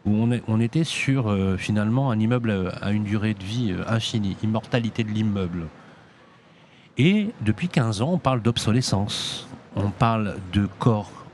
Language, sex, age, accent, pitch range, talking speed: French, male, 40-59, French, 105-140 Hz, 145 wpm